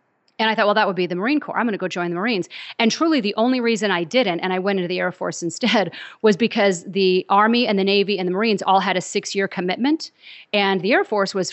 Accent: American